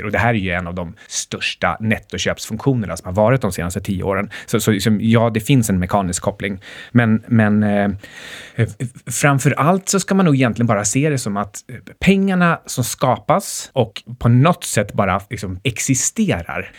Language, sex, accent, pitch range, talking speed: Swedish, male, native, 100-130 Hz, 175 wpm